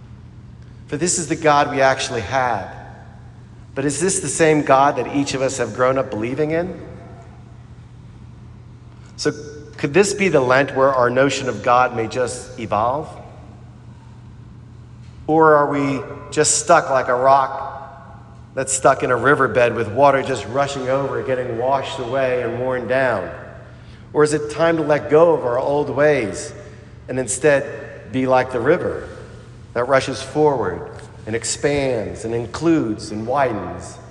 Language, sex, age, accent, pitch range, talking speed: English, male, 40-59, American, 115-145 Hz, 155 wpm